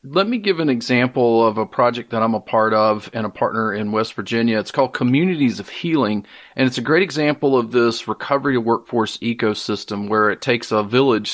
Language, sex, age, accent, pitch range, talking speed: English, male, 40-59, American, 110-130 Hz, 205 wpm